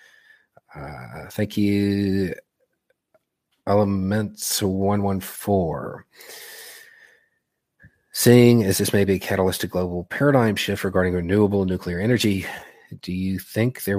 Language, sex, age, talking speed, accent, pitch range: English, male, 40-59, 100 wpm, American, 95-120 Hz